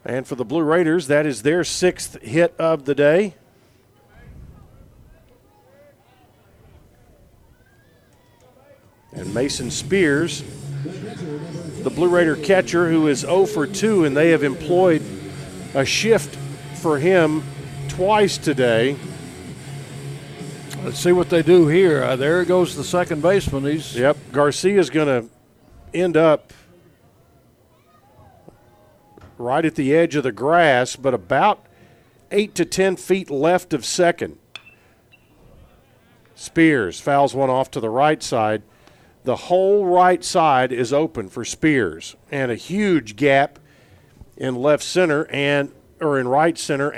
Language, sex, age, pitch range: English, male, 50-69, 125-165 Hz